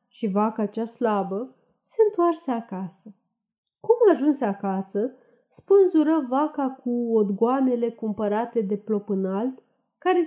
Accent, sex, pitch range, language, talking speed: native, female, 210-275 Hz, Romanian, 110 wpm